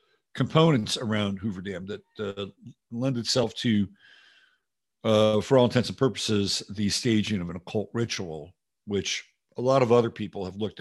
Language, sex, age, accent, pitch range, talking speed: English, male, 50-69, American, 100-130 Hz, 160 wpm